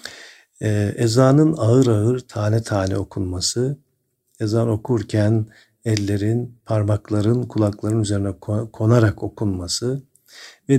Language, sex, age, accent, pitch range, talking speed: Turkish, male, 50-69, native, 105-125 Hz, 85 wpm